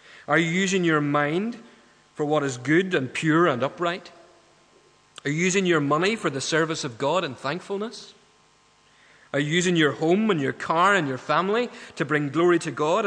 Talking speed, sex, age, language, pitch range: 190 wpm, male, 30-49, English, 130-175 Hz